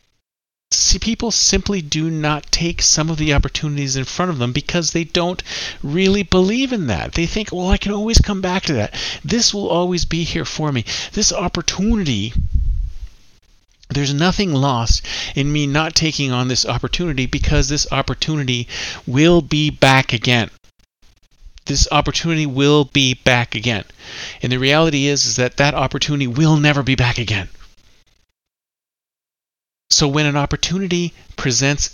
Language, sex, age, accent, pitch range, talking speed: English, male, 40-59, American, 120-170 Hz, 150 wpm